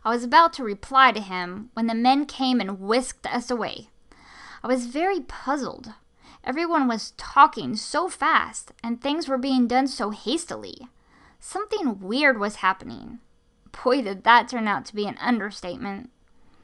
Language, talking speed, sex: English, 160 wpm, female